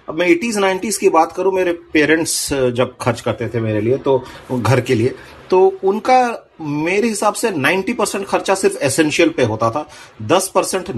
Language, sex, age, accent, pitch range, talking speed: Hindi, male, 30-49, native, 130-195 Hz, 175 wpm